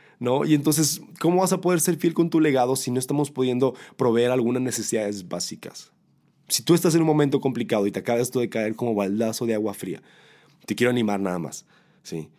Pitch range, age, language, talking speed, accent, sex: 115-150 Hz, 30-49, Spanish, 210 wpm, Mexican, male